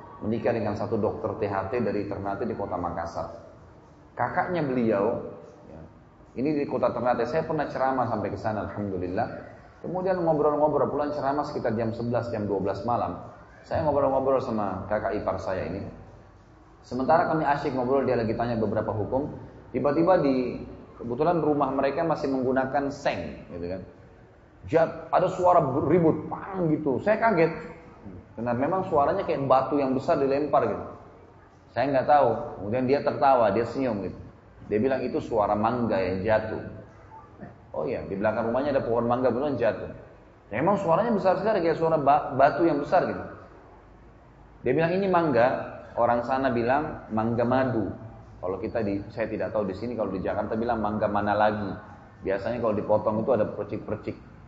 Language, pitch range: Indonesian, 105-145 Hz